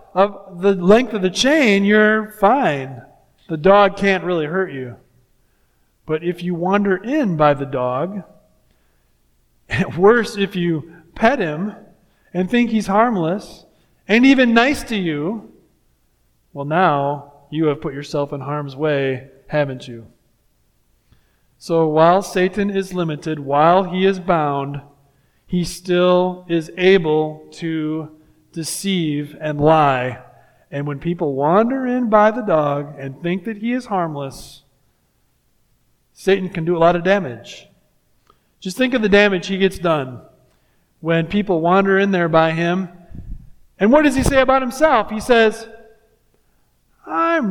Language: English